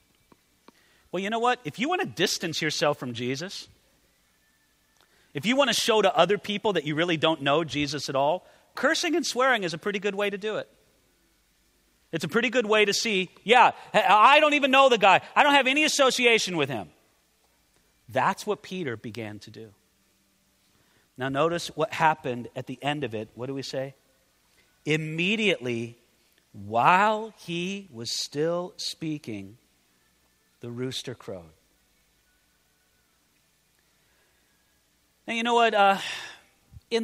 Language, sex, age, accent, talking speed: English, male, 40-59, American, 150 wpm